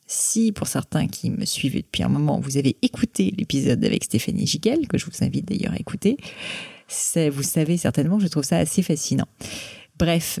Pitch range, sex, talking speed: 150-185 Hz, female, 195 wpm